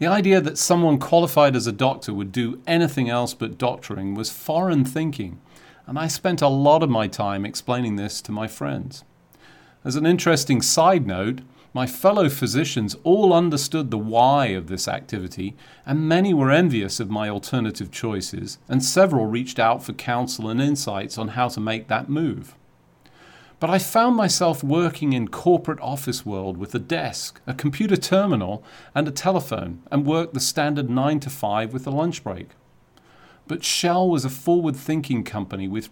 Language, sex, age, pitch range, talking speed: English, male, 40-59, 110-155 Hz, 175 wpm